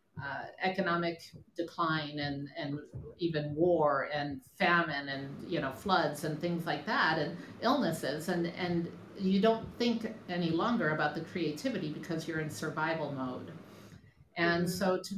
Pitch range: 155-195 Hz